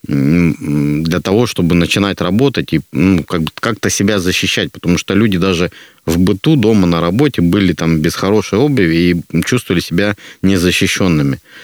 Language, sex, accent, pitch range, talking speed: Russian, male, native, 85-105 Hz, 145 wpm